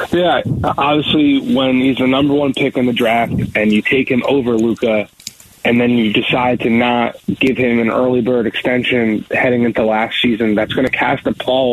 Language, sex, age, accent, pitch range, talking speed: English, male, 20-39, American, 120-140 Hz, 200 wpm